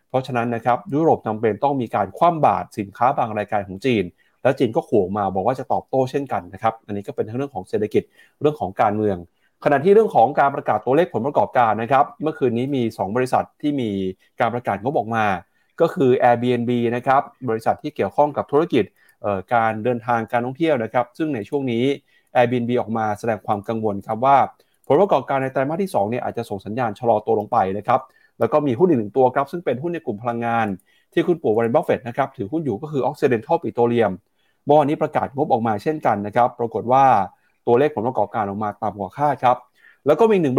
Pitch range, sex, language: 115-145 Hz, male, Thai